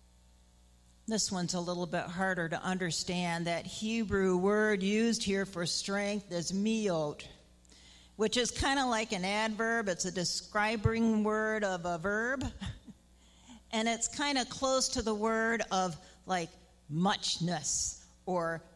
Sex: female